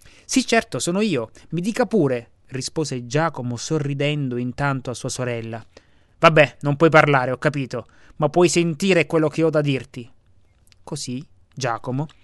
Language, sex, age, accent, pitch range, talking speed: Italian, male, 30-49, native, 130-180 Hz, 145 wpm